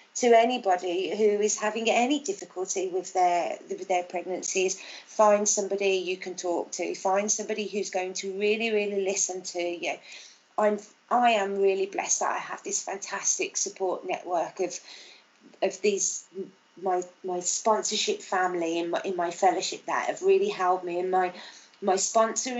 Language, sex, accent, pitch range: English, female, British, 185-225 Hz